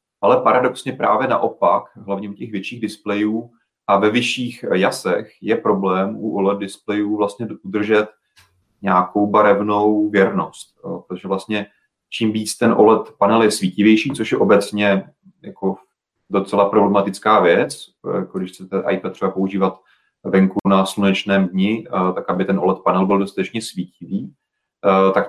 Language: Czech